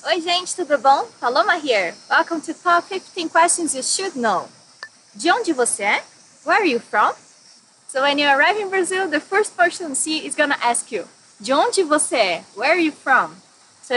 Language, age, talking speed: English, 20-39, 200 wpm